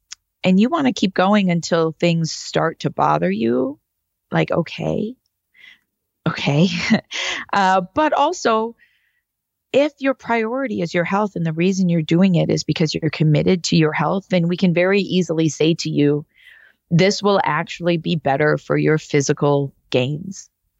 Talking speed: 155 wpm